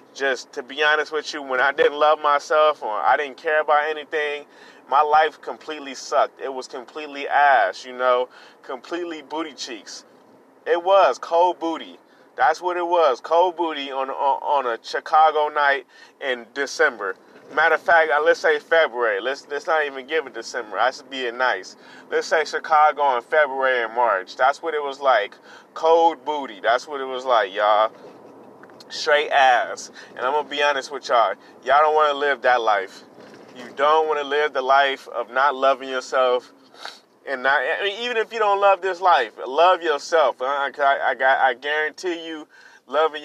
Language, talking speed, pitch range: English, 185 wpm, 140-160 Hz